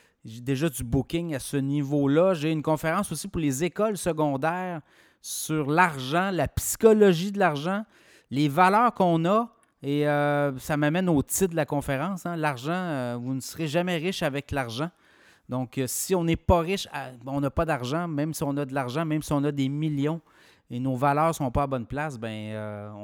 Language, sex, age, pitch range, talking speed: French, male, 30-49, 135-170 Hz, 200 wpm